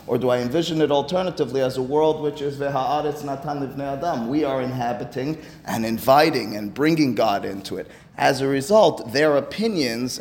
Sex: male